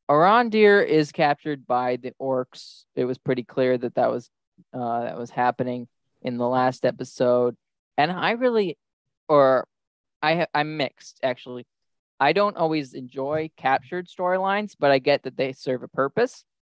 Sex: male